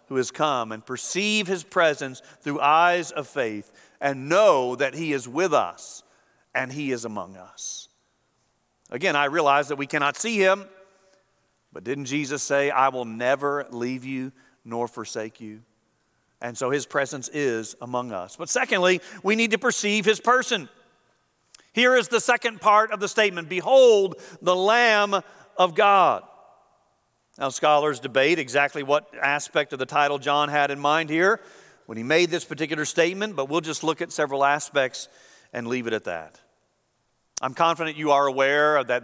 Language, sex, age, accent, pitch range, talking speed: English, male, 50-69, American, 135-185 Hz, 170 wpm